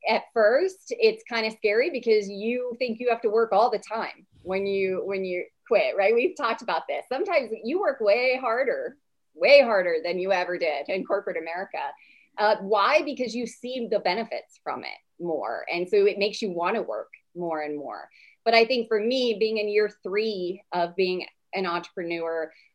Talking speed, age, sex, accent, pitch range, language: 195 wpm, 30-49, female, American, 190-245 Hz, English